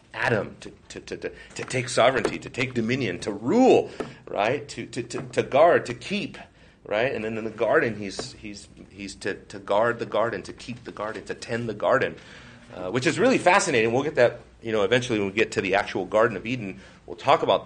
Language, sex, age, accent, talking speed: English, male, 40-59, American, 225 wpm